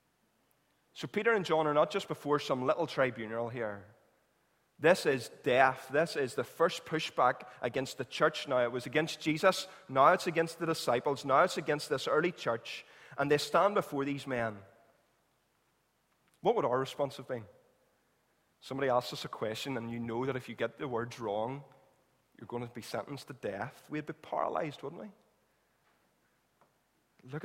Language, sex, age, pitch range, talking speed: English, male, 30-49, 120-150 Hz, 175 wpm